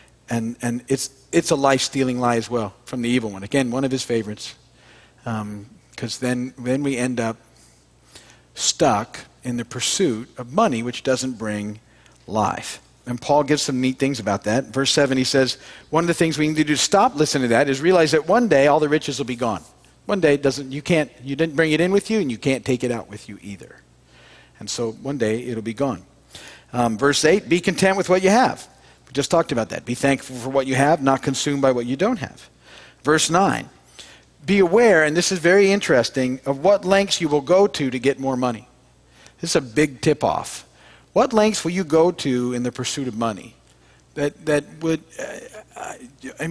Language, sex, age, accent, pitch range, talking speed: English, male, 50-69, American, 120-155 Hz, 215 wpm